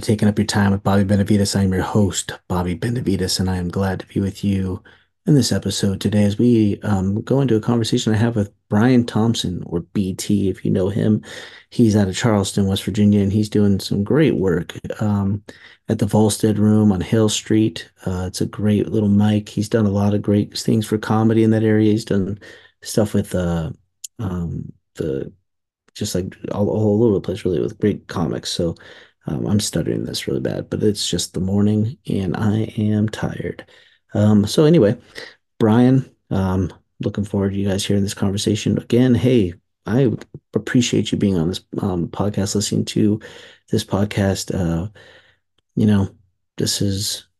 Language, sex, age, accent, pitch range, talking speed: English, male, 40-59, American, 95-110 Hz, 185 wpm